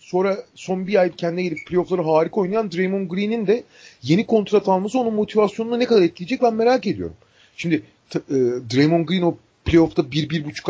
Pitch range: 145-210 Hz